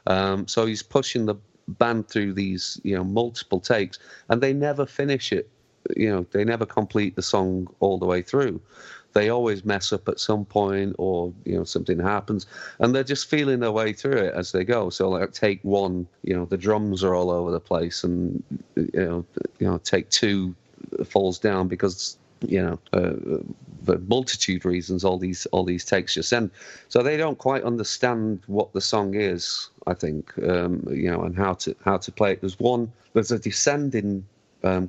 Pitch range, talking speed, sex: 95-115 Hz, 195 wpm, male